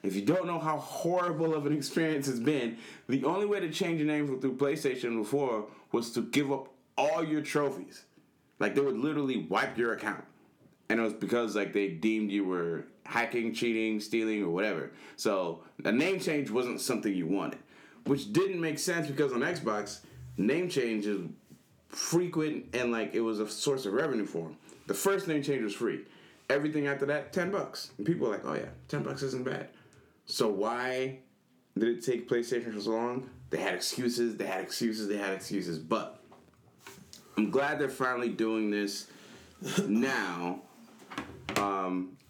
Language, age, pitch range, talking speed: English, 20-39, 105-140 Hz, 180 wpm